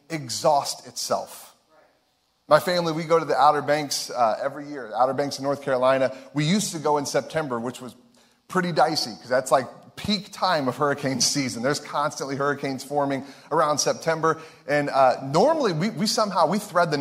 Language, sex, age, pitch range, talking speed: English, male, 30-49, 135-165 Hz, 180 wpm